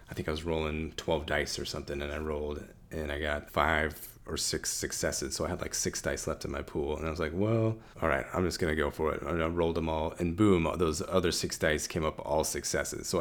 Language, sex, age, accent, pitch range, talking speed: English, male, 30-49, American, 80-95 Hz, 270 wpm